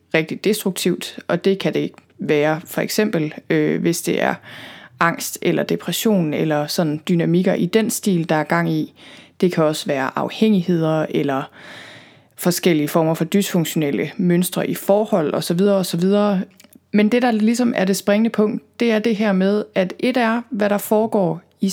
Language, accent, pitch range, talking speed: Danish, native, 170-210 Hz, 180 wpm